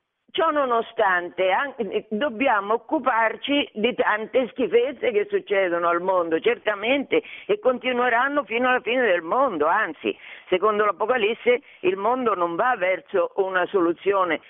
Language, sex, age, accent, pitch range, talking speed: Italian, female, 50-69, native, 180-285 Hz, 120 wpm